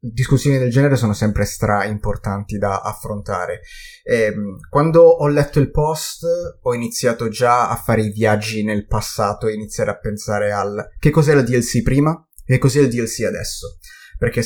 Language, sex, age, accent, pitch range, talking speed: Italian, male, 30-49, native, 105-130 Hz, 160 wpm